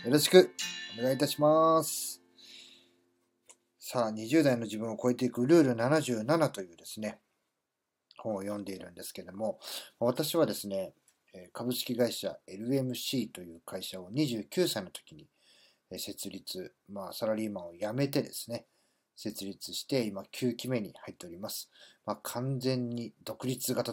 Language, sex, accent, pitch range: Japanese, male, native, 100-135 Hz